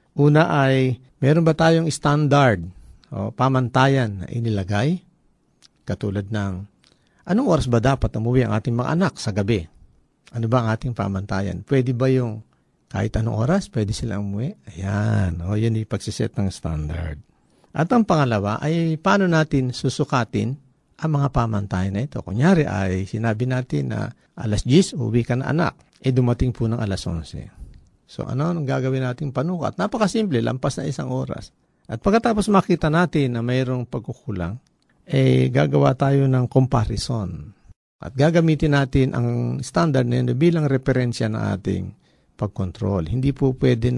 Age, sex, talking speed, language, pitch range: 50-69, male, 155 wpm, Filipino, 105-140 Hz